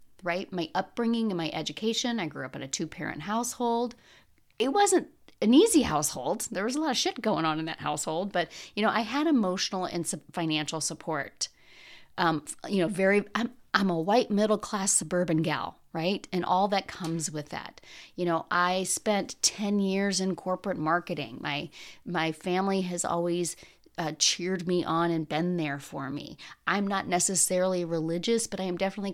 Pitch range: 160-200 Hz